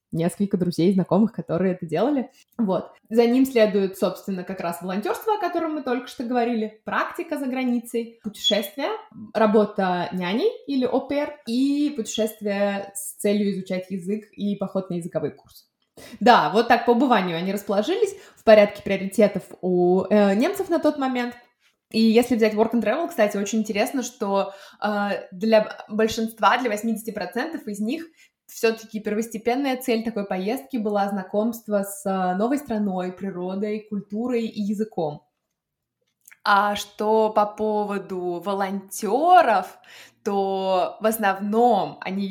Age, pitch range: 20-39, 195-235 Hz